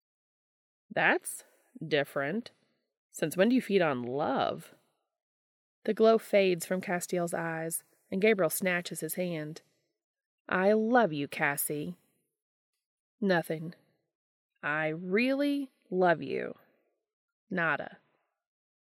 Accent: American